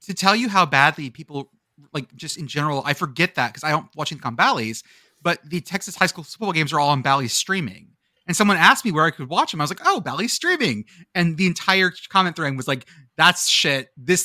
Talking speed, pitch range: 240 wpm, 125-180 Hz